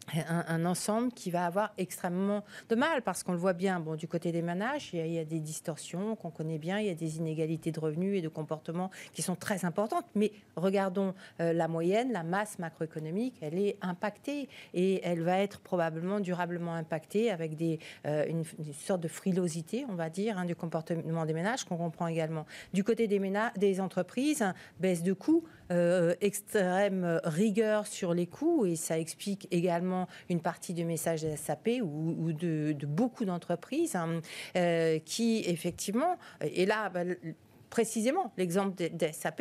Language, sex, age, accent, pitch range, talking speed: French, female, 40-59, French, 165-205 Hz, 185 wpm